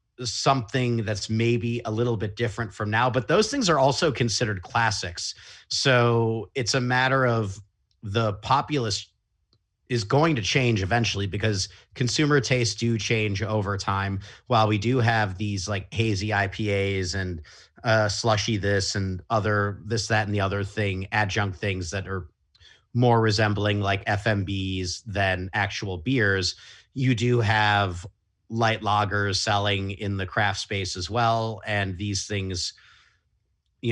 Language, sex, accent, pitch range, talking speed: English, male, American, 100-115 Hz, 145 wpm